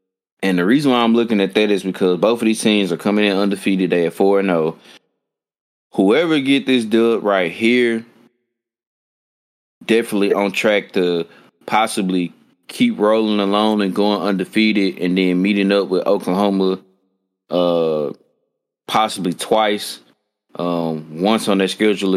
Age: 20-39